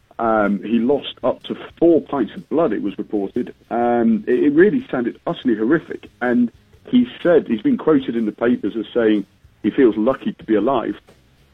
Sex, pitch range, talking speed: male, 105-120 Hz, 185 wpm